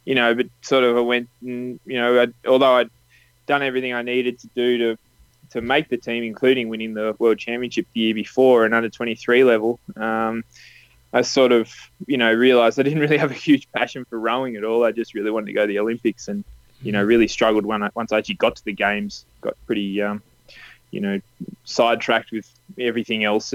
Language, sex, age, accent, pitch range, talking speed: English, male, 20-39, Australian, 110-125 Hz, 210 wpm